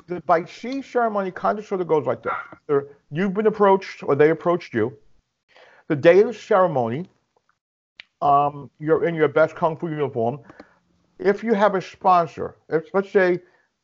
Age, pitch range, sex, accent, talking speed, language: 50-69, 145-180 Hz, male, American, 165 wpm, English